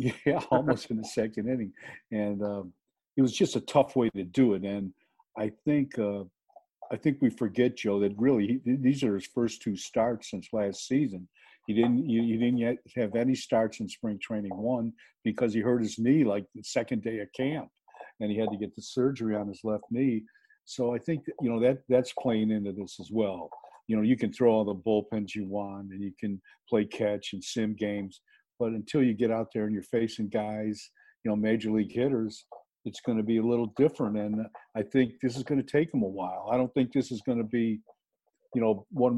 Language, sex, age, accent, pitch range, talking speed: English, male, 50-69, American, 105-125 Hz, 225 wpm